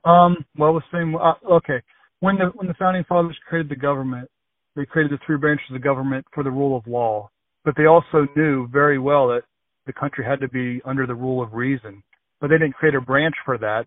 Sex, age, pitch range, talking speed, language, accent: male, 40-59, 120-140 Hz, 230 wpm, English, American